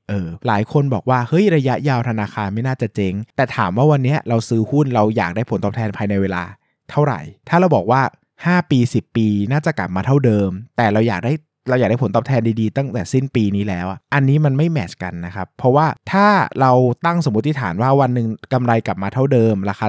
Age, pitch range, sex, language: 20-39, 100-135 Hz, male, Thai